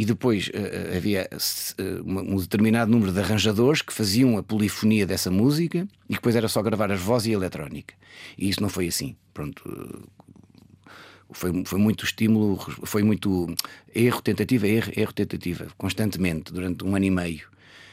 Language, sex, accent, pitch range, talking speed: Portuguese, male, Portuguese, 95-115 Hz, 145 wpm